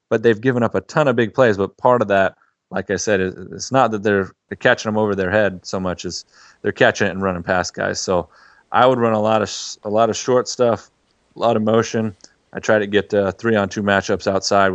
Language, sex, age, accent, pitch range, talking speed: English, male, 30-49, American, 95-110 Hz, 235 wpm